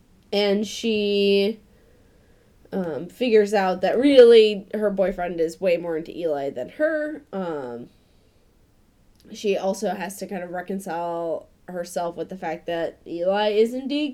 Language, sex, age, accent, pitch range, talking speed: English, female, 20-39, American, 170-215 Hz, 135 wpm